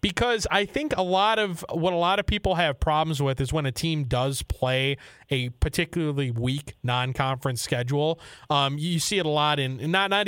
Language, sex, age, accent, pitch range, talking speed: English, male, 30-49, American, 140-180 Hz, 200 wpm